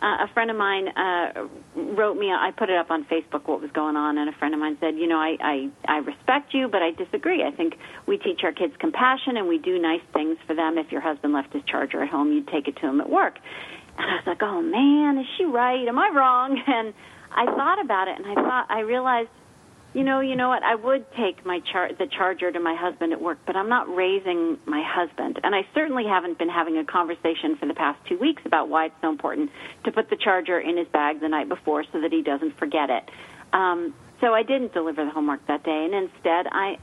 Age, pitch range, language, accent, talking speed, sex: 40-59, 165-270 Hz, English, American, 250 wpm, female